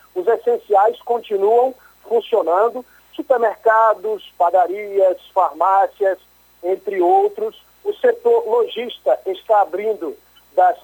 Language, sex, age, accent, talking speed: Portuguese, male, 50-69, Brazilian, 85 wpm